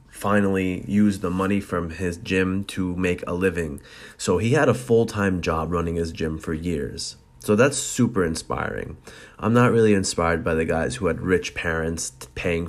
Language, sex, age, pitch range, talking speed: English, male, 30-49, 85-100 Hz, 185 wpm